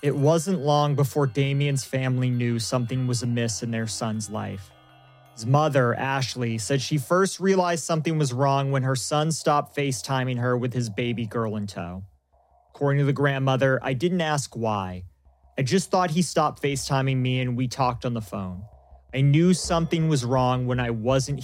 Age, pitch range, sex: 30-49, 115-150 Hz, male